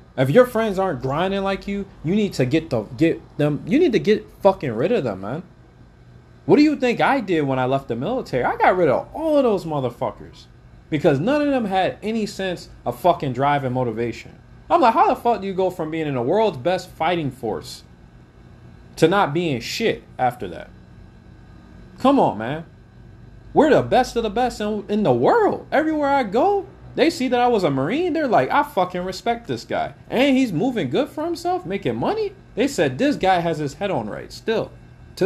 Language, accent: English, American